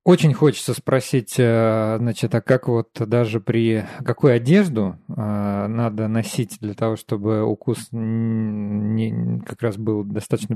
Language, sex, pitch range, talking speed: Russian, male, 105-130 Hz, 125 wpm